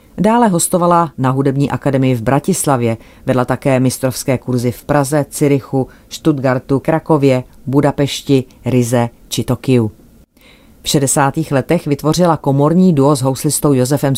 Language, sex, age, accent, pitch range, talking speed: Czech, female, 30-49, native, 130-155 Hz, 125 wpm